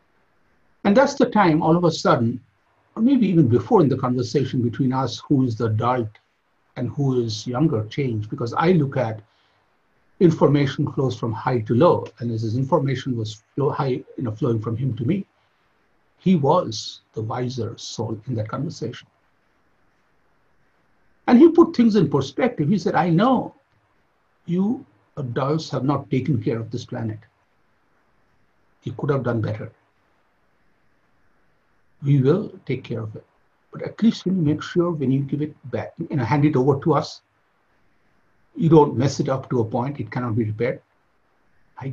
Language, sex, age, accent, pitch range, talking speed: English, male, 60-79, Indian, 120-160 Hz, 170 wpm